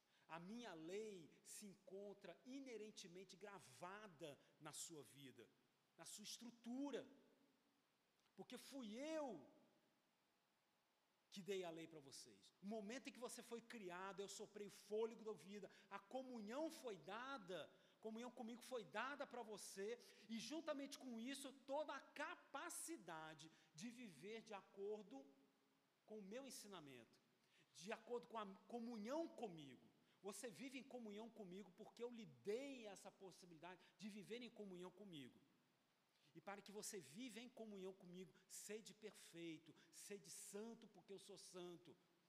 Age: 50-69